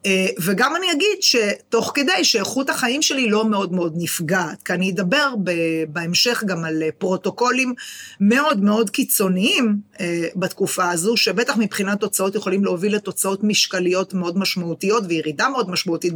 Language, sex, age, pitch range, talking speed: Hebrew, female, 30-49, 185-240 Hz, 135 wpm